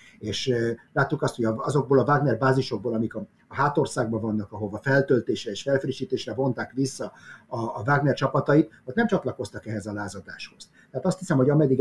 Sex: male